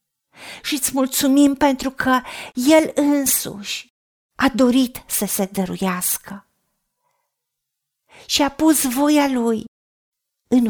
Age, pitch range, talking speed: 40-59, 225-285 Hz, 100 wpm